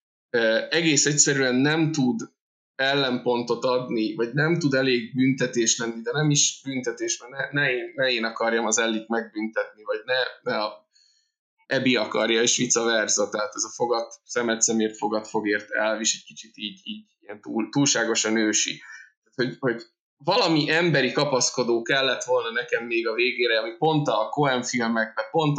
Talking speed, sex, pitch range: 160 wpm, male, 115-160 Hz